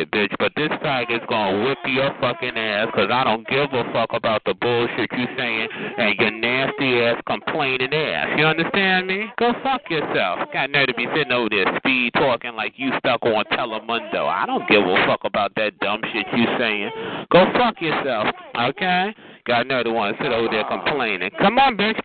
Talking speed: 195 wpm